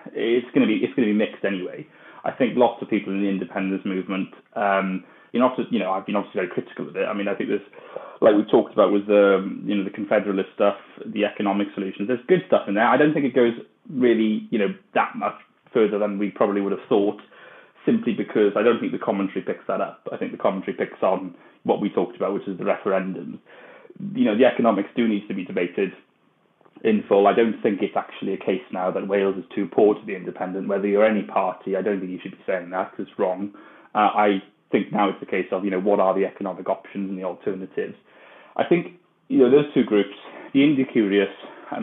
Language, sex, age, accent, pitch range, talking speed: English, male, 20-39, British, 95-105 Hz, 240 wpm